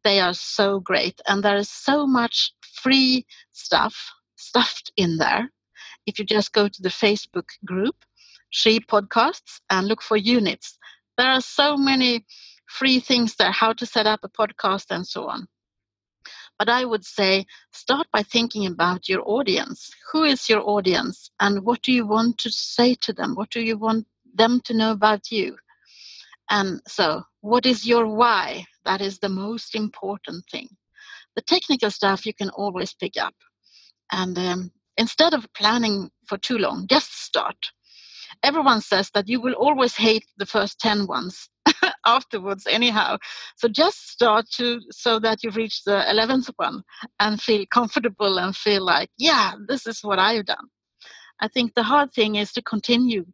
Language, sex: English, female